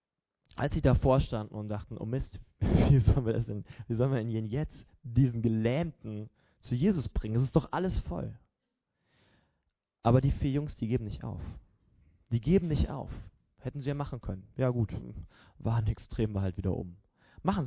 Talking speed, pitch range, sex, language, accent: 185 wpm, 110-160 Hz, male, German, German